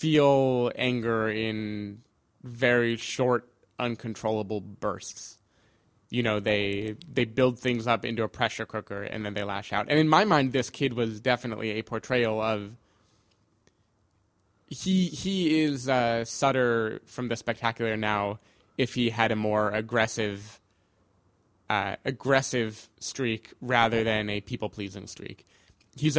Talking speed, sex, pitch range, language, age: 135 wpm, male, 105-125 Hz, English, 20-39